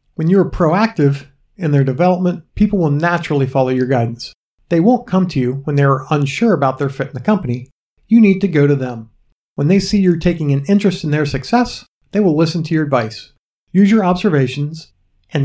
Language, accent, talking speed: English, American, 210 wpm